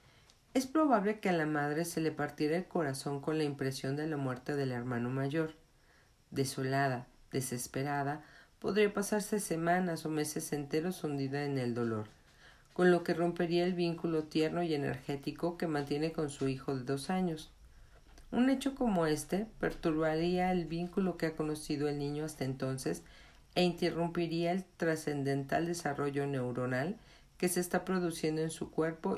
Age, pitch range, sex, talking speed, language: 40-59, 140-170 Hz, female, 155 wpm, Spanish